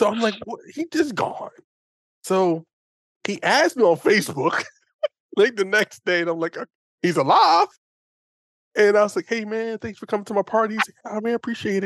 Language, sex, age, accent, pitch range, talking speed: English, male, 20-39, American, 170-225 Hz, 200 wpm